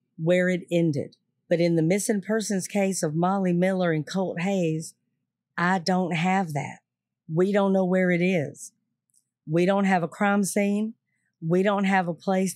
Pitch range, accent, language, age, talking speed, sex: 165-195 Hz, American, English, 50-69, 170 wpm, female